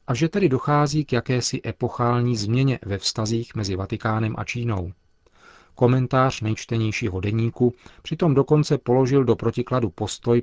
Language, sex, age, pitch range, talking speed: Czech, male, 40-59, 110-130 Hz, 130 wpm